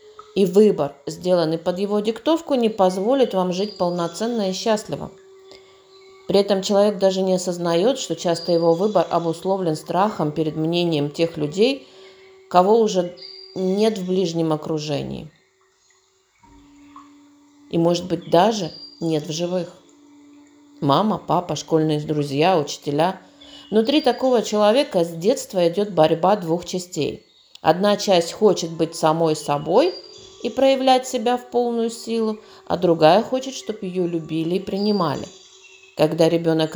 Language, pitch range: Russian, 165-230 Hz